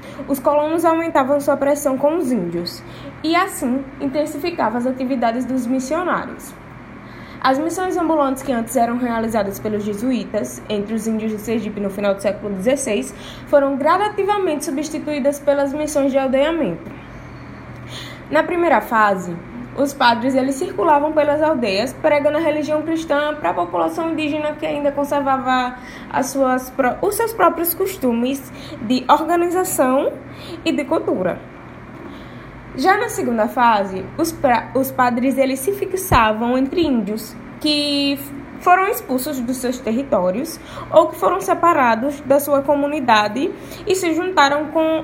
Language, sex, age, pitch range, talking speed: Portuguese, female, 10-29, 245-315 Hz, 135 wpm